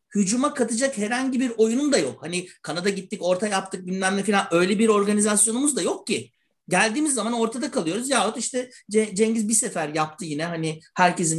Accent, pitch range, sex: native, 160-225 Hz, male